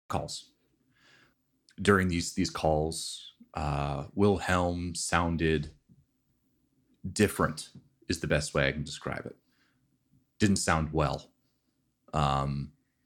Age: 30-49